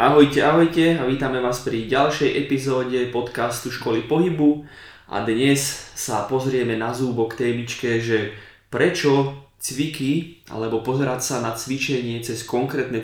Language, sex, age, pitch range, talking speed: Slovak, male, 20-39, 115-135 Hz, 135 wpm